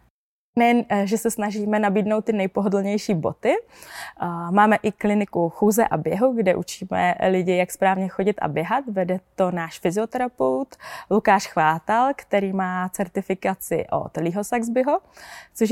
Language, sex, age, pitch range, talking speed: Czech, female, 20-39, 185-215 Hz, 130 wpm